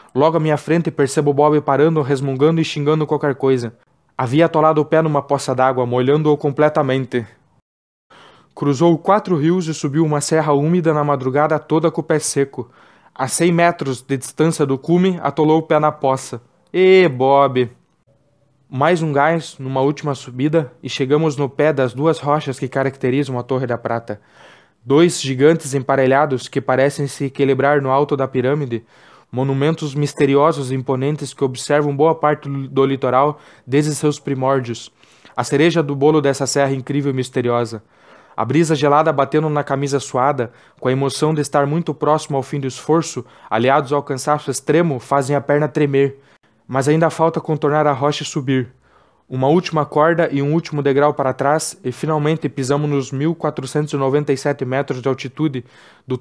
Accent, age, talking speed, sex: Brazilian, 20-39, 165 wpm, male